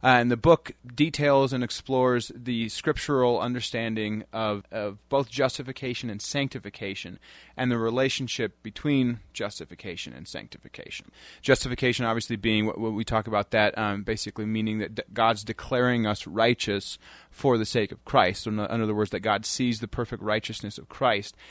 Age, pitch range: 30-49, 105-125 Hz